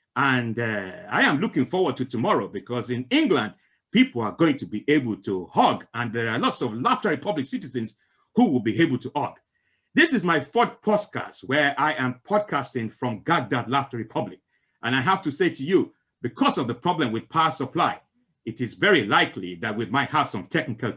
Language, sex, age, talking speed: English, male, 50-69, 200 wpm